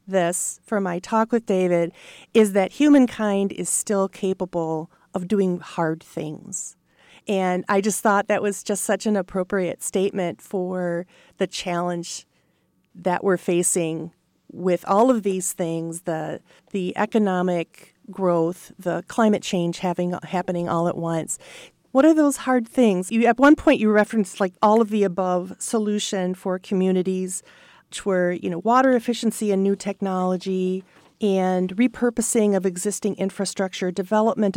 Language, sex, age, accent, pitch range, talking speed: English, female, 40-59, American, 180-215 Hz, 145 wpm